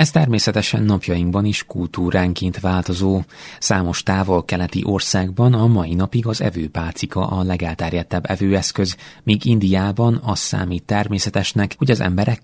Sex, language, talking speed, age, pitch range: male, Hungarian, 125 wpm, 30-49, 90-110 Hz